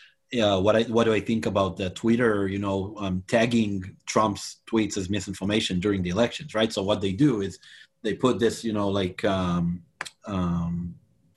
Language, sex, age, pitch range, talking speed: English, male, 30-49, 100-120 Hz, 185 wpm